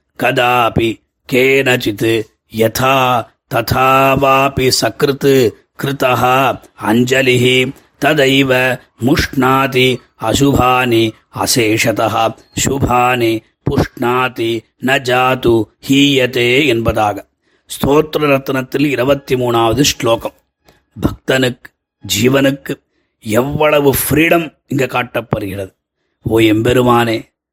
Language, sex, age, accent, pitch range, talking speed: Tamil, male, 30-49, native, 120-140 Hz, 55 wpm